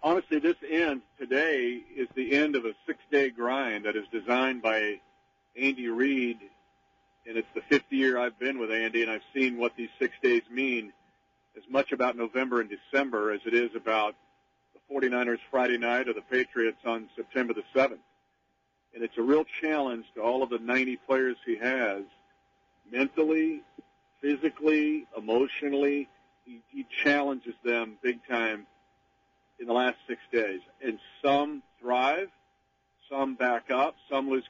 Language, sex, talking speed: English, male, 155 wpm